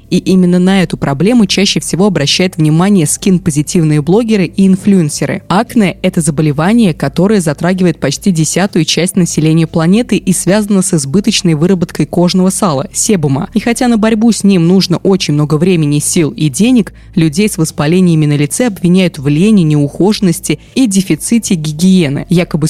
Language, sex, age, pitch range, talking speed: Russian, female, 20-39, 155-200 Hz, 155 wpm